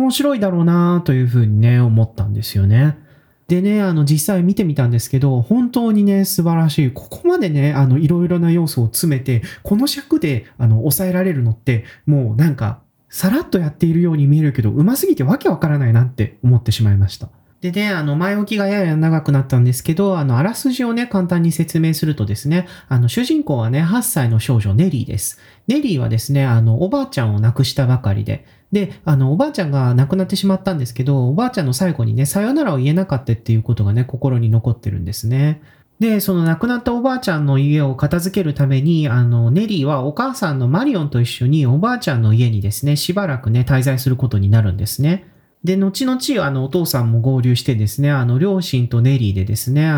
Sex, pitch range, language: male, 120-180 Hz, Japanese